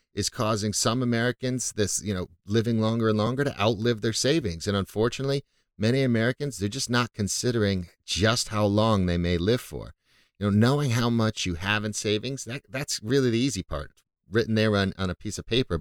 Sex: male